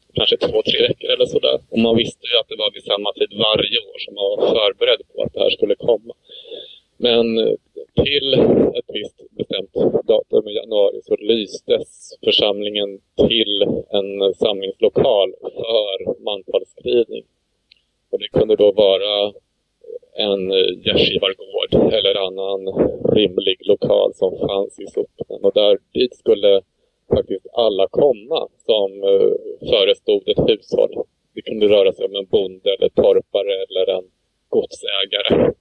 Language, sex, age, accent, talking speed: Swedish, male, 30-49, Norwegian, 140 wpm